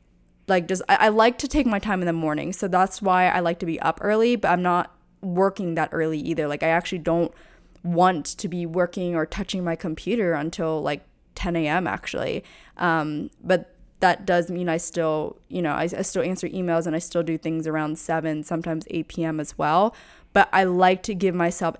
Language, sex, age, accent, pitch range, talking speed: English, female, 20-39, American, 160-185 Hz, 210 wpm